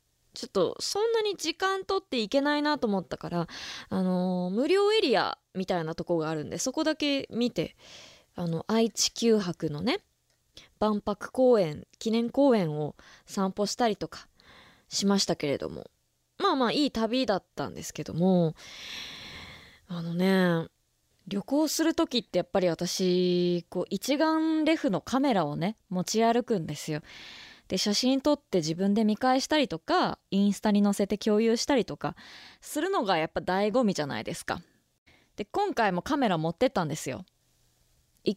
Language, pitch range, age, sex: Japanese, 180-280 Hz, 20-39, female